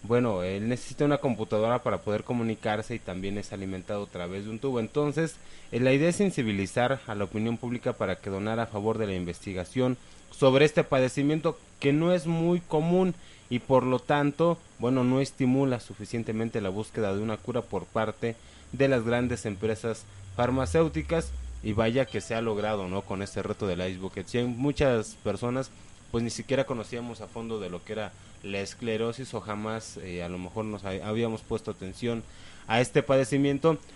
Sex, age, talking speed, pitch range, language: male, 20-39, 185 wpm, 100-125 Hz, Spanish